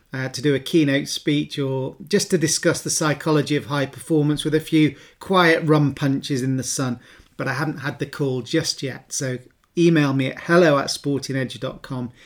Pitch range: 135-155 Hz